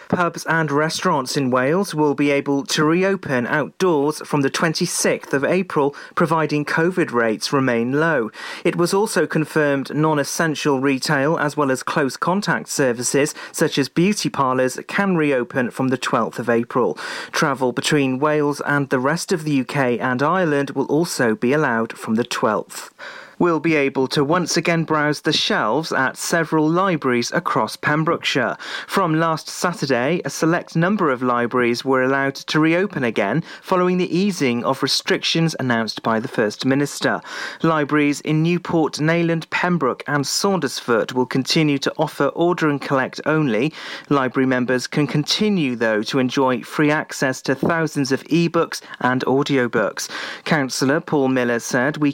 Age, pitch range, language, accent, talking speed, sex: 40-59, 135-165 Hz, English, British, 155 wpm, male